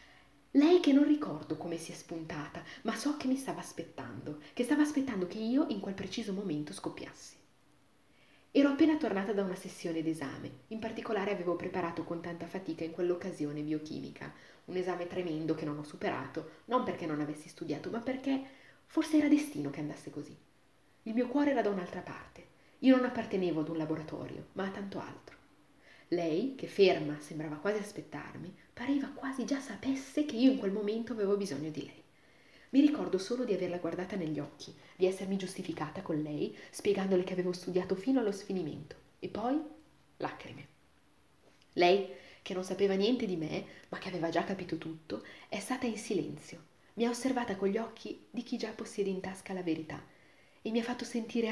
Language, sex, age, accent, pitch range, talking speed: Italian, female, 30-49, native, 165-235 Hz, 180 wpm